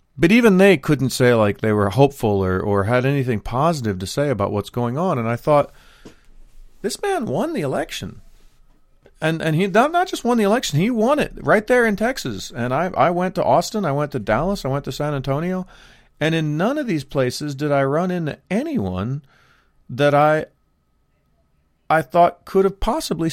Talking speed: 195 wpm